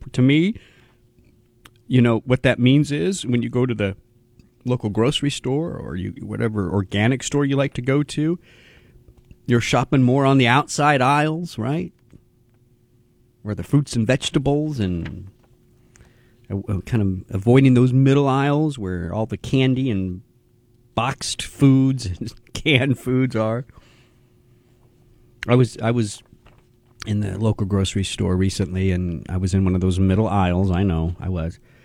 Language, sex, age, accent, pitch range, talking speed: English, male, 40-59, American, 105-135 Hz, 155 wpm